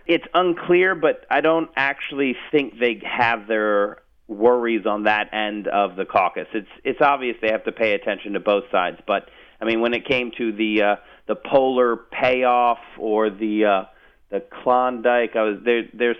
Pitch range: 110-135 Hz